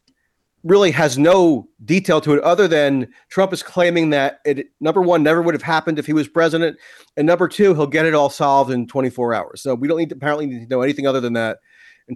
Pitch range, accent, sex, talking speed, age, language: 130-165 Hz, American, male, 235 wpm, 40-59, English